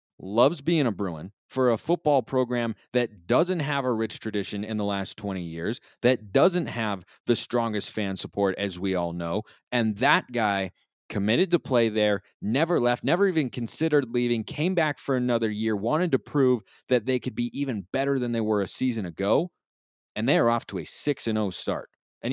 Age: 30-49